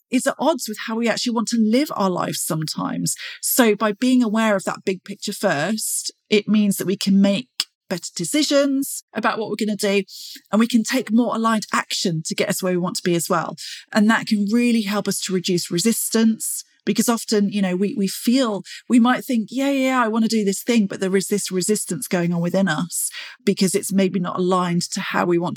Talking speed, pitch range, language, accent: 230 wpm, 190-230 Hz, English, British